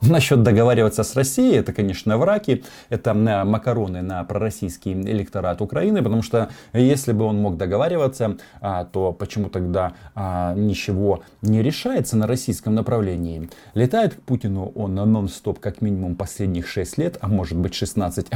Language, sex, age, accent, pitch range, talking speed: Russian, male, 20-39, native, 95-125 Hz, 145 wpm